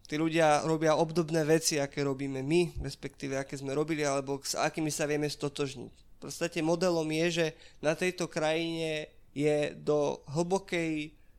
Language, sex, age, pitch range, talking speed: Slovak, male, 20-39, 140-165 Hz, 155 wpm